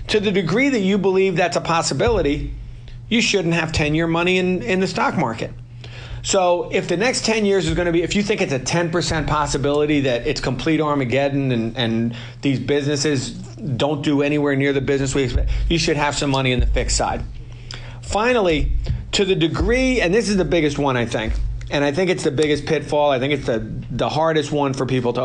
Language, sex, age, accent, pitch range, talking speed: English, male, 40-59, American, 125-165 Hz, 210 wpm